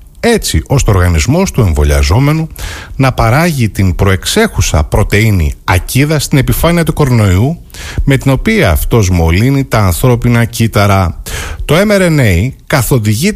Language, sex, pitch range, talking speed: Greek, male, 95-150 Hz, 120 wpm